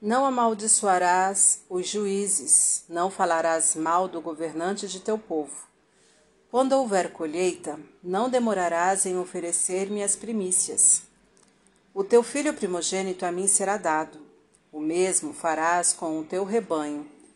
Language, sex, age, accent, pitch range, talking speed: Portuguese, female, 40-59, Brazilian, 170-210 Hz, 125 wpm